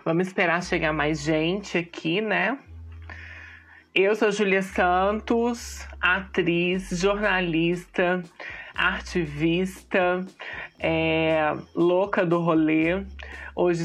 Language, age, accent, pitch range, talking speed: Portuguese, 20-39, Brazilian, 170-205 Hz, 85 wpm